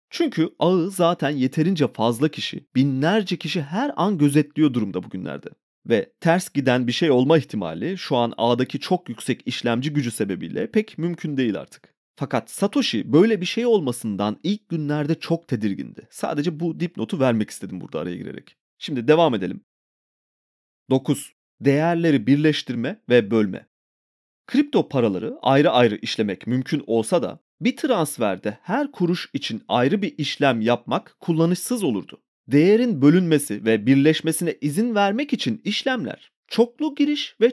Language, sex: Turkish, male